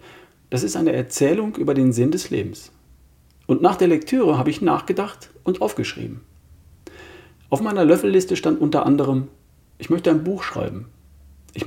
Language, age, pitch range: German, 40-59, 120-165 Hz